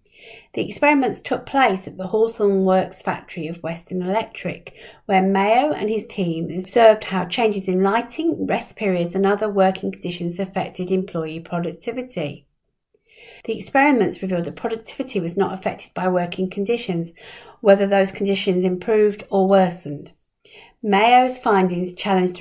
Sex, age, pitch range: female, 50-69, 180-230 Hz